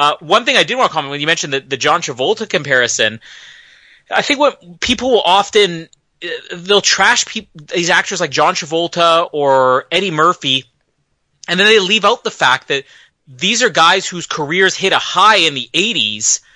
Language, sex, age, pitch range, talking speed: English, male, 30-49, 145-195 Hz, 185 wpm